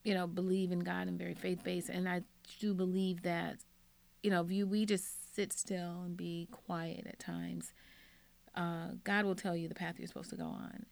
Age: 30-49